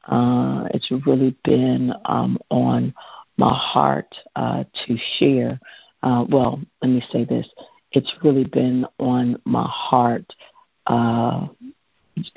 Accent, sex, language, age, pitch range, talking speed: American, female, English, 50-69, 120-135 Hz, 115 wpm